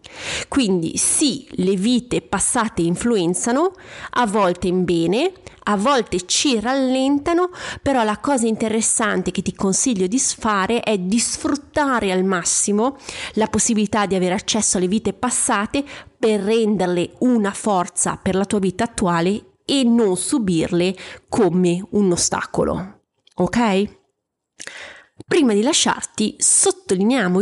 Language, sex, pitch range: Italian, female, 180-250 Hz